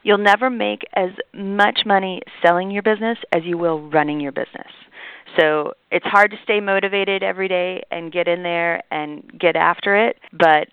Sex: female